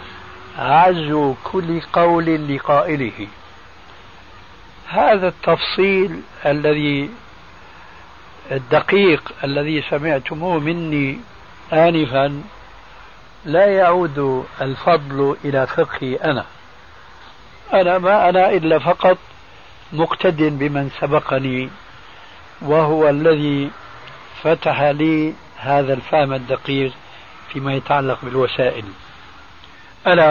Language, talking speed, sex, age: Arabic, 75 wpm, male, 60-79